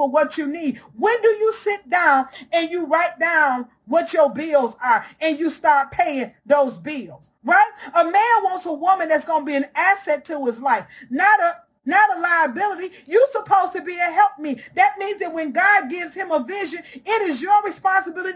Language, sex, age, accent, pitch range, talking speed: English, female, 40-59, American, 315-390 Hz, 205 wpm